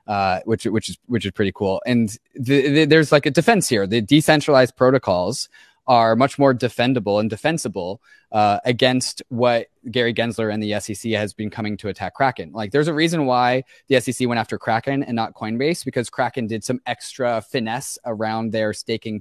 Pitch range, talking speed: 110-130 Hz, 185 wpm